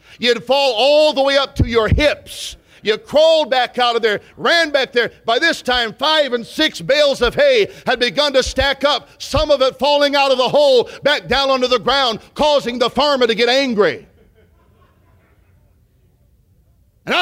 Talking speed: 180 wpm